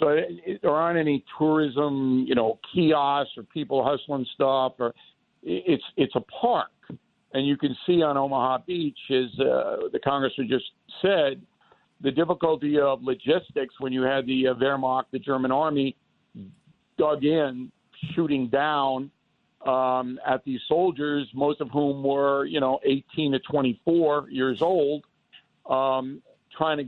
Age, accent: 60-79, American